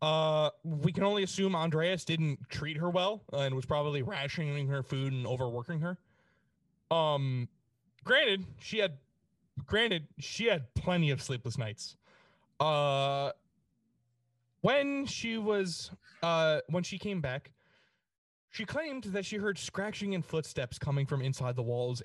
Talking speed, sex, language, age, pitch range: 145 wpm, male, English, 30-49, 125-170 Hz